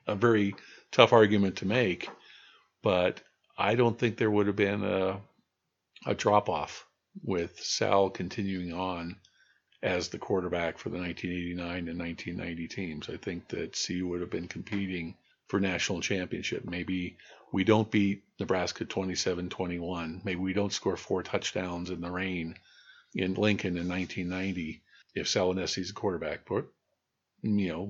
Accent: American